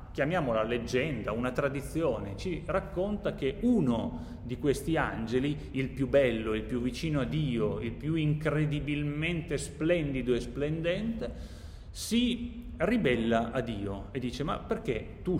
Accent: native